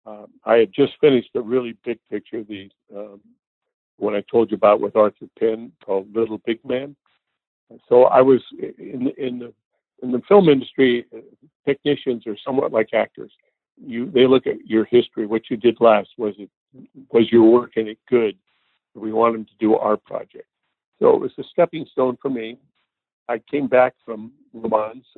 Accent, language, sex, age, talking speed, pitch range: American, English, male, 60-79, 185 wpm, 110-135 Hz